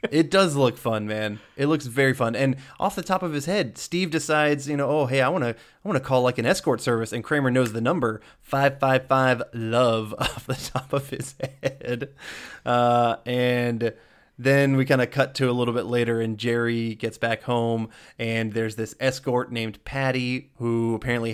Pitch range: 115-130 Hz